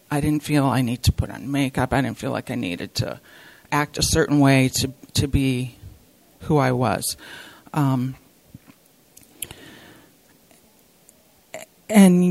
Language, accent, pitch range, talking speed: English, American, 135-160 Hz, 135 wpm